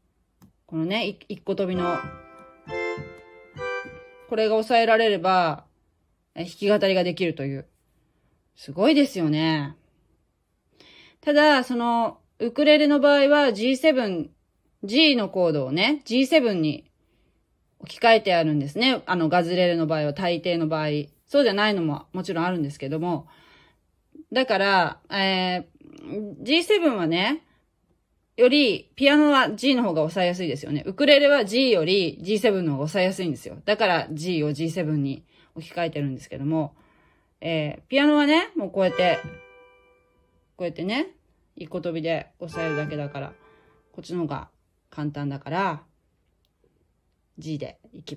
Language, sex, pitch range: Japanese, female, 150-225 Hz